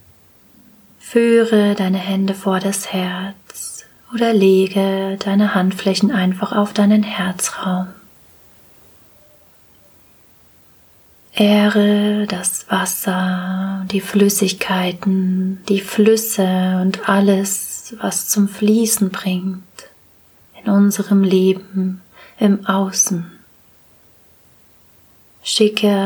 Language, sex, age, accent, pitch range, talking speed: German, female, 30-49, German, 185-205 Hz, 75 wpm